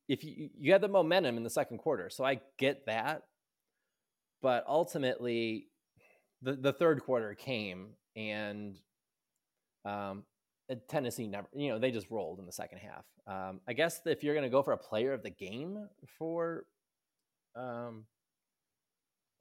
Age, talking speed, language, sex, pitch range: 20-39, 155 wpm, English, male, 105-135 Hz